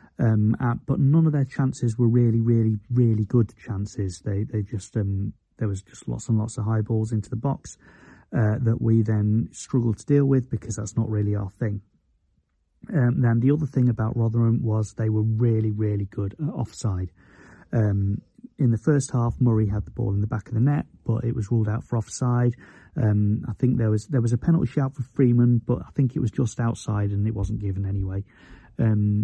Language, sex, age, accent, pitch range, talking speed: English, male, 30-49, British, 105-125 Hz, 215 wpm